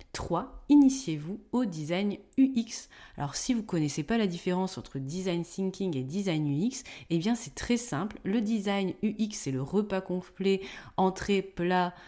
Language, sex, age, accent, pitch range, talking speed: French, female, 30-49, French, 155-230 Hz, 165 wpm